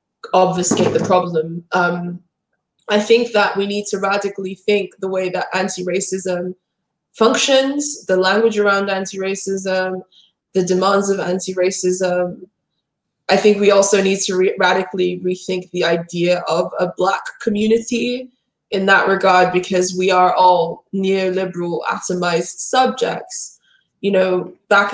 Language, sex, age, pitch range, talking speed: English, female, 20-39, 175-195 Hz, 135 wpm